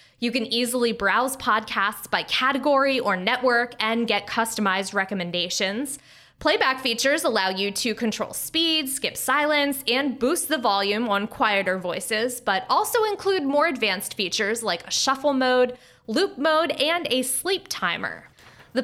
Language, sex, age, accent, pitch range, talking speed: English, female, 20-39, American, 210-285 Hz, 145 wpm